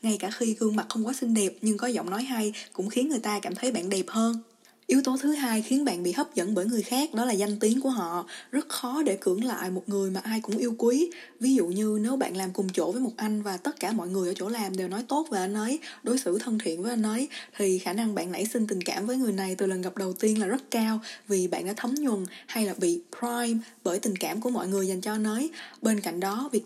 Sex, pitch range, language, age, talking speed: female, 195-250 Hz, Vietnamese, 20-39, 285 wpm